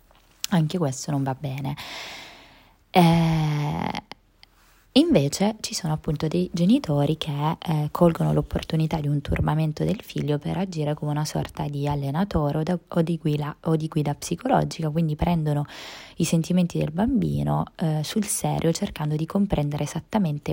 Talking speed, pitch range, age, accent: 135 wpm, 145-170 Hz, 20-39, native